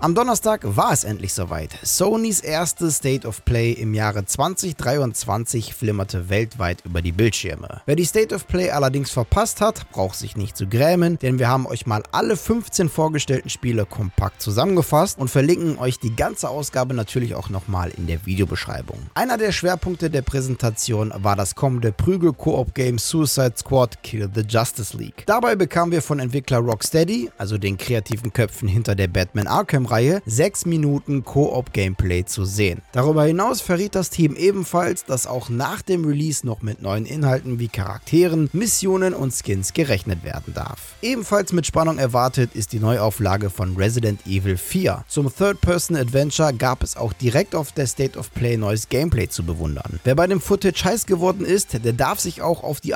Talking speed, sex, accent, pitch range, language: 170 wpm, male, German, 110-160 Hz, German